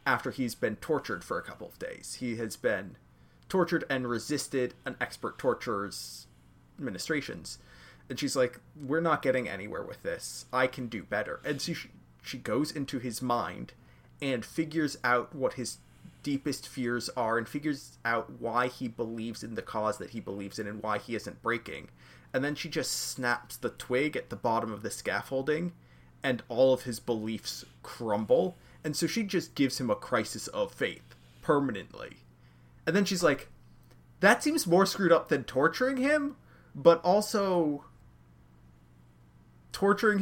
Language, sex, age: English, male, 30-49